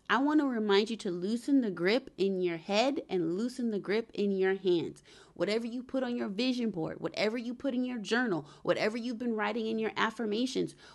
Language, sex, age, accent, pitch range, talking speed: English, female, 30-49, American, 195-255 Hz, 210 wpm